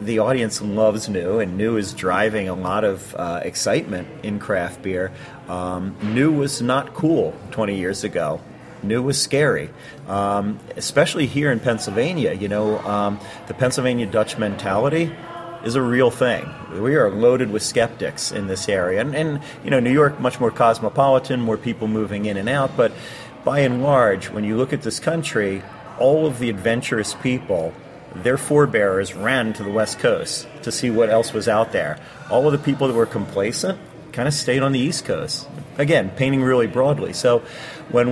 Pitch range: 105-140 Hz